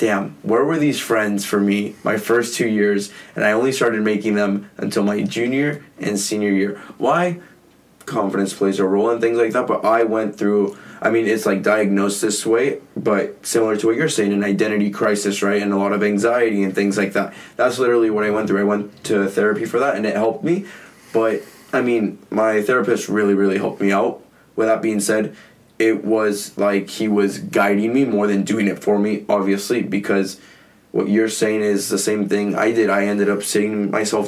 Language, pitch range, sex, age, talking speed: English, 100-110 Hz, male, 20-39, 210 wpm